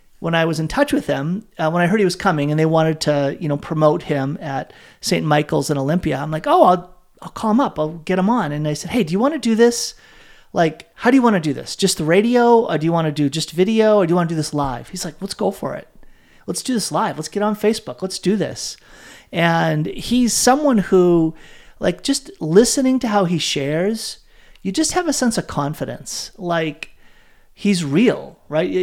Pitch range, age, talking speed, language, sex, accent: 155-215 Hz, 30-49, 230 wpm, English, male, American